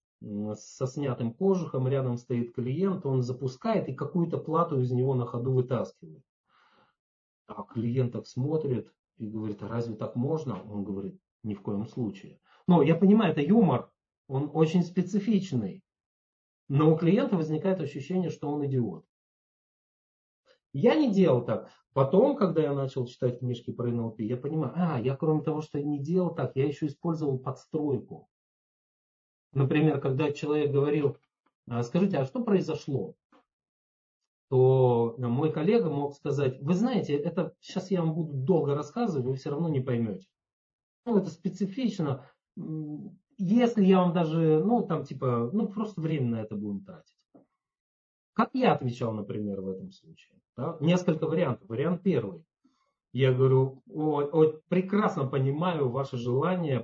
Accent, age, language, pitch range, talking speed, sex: native, 40-59, Russian, 125-175 Hz, 145 wpm, male